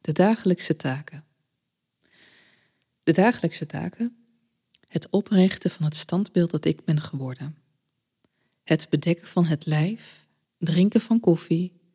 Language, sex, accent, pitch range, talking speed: Dutch, female, Dutch, 150-175 Hz, 115 wpm